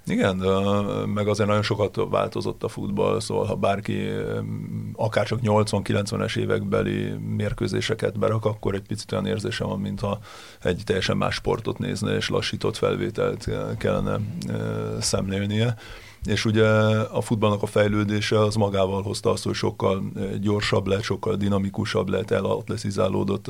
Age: 30-49